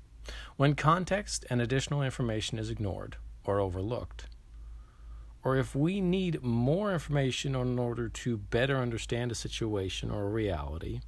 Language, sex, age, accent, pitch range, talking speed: English, male, 40-59, American, 75-125 Hz, 135 wpm